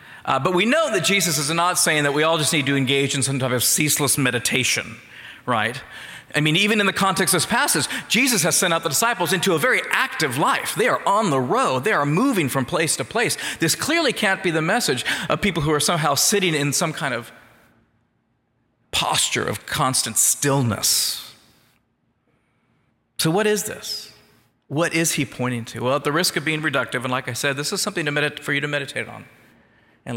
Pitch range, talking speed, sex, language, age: 120-165 Hz, 205 wpm, male, English, 40-59